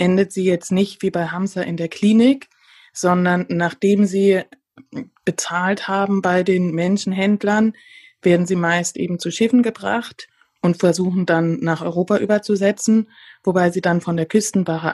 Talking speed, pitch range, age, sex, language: 150 wpm, 155-190 Hz, 20-39, female, German